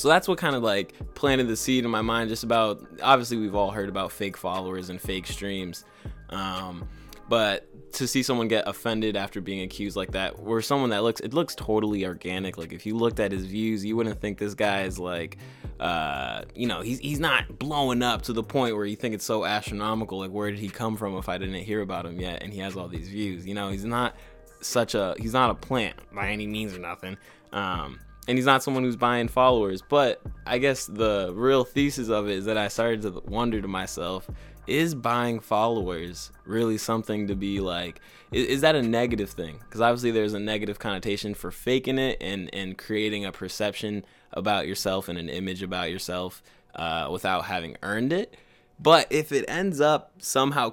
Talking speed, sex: 210 wpm, male